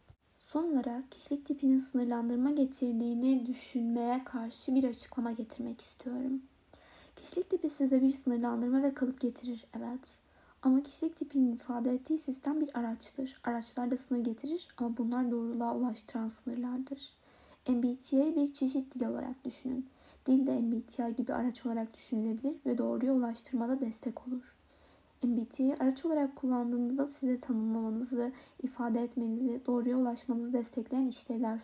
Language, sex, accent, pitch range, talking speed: Turkish, female, native, 240-275 Hz, 130 wpm